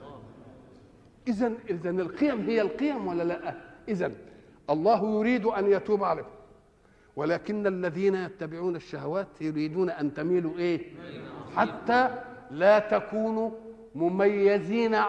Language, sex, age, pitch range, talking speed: Arabic, male, 50-69, 170-220 Hz, 100 wpm